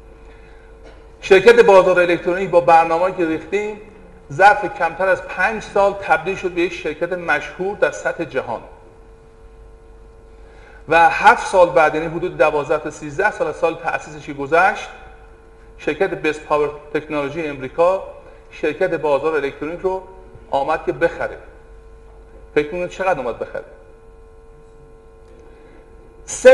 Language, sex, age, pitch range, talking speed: Persian, male, 50-69, 155-195 Hz, 115 wpm